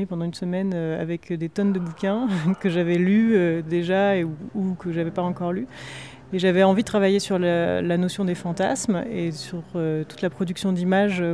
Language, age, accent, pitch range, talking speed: French, 30-49, French, 170-200 Hz, 185 wpm